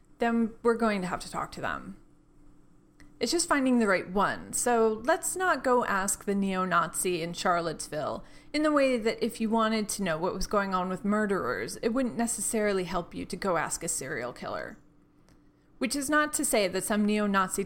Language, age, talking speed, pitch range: English, 30-49, 195 wpm, 185-245 Hz